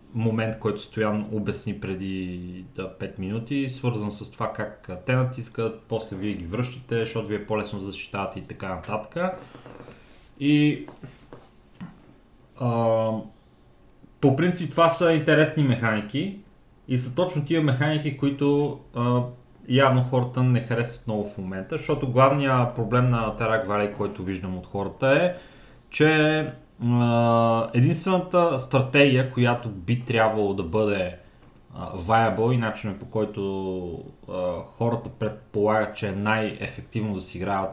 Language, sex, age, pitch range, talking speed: Bulgarian, male, 30-49, 105-135 Hz, 130 wpm